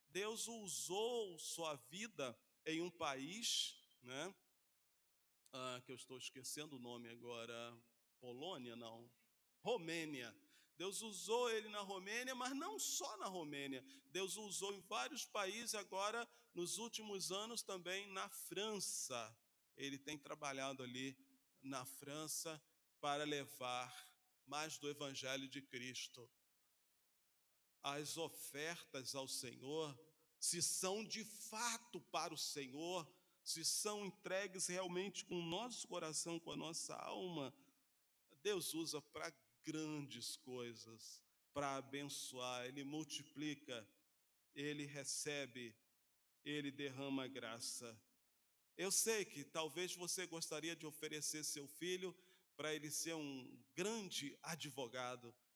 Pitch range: 135-190 Hz